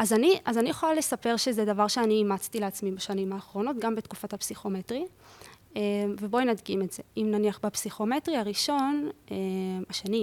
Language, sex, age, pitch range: English, female, 20-39, 205-235 Hz